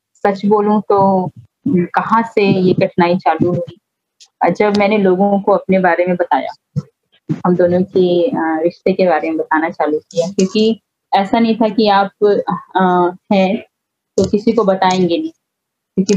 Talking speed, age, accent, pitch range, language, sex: 150 wpm, 20-39, native, 175-205 Hz, Hindi, female